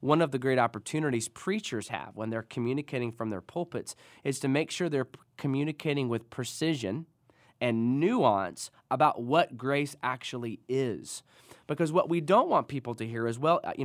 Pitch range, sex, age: 120-165 Hz, male, 20-39